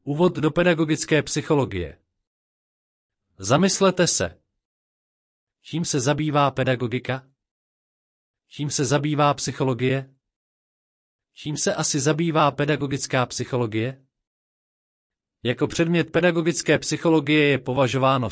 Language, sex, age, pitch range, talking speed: Czech, male, 40-59, 120-150 Hz, 85 wpm